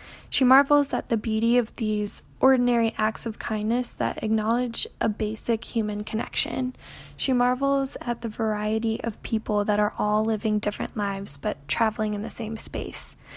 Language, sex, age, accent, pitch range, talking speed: English, female, 10-29, American, 215-245 Hz, 160 wpm